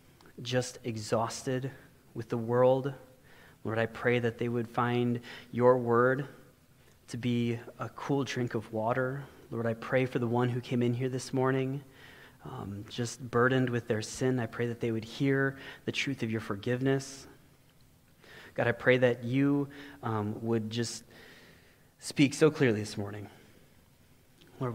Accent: American